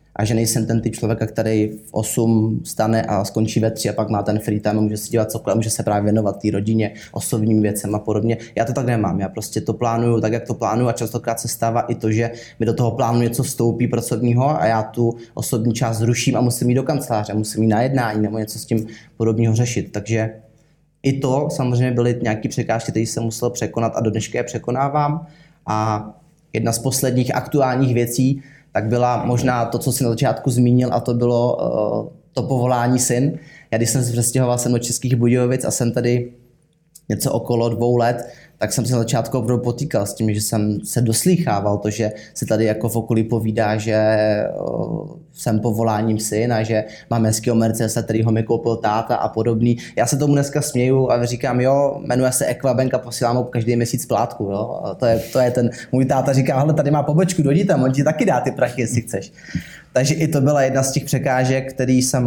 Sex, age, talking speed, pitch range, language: male, 20-39, 210 wpm, 110-130 Hz, Slovak